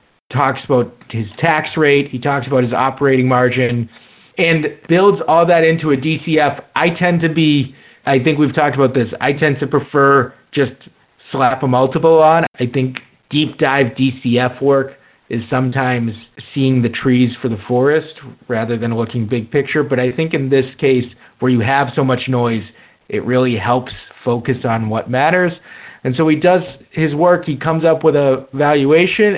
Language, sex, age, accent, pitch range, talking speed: English, male, 30-49, American, 125-155 Hz, 180 wpm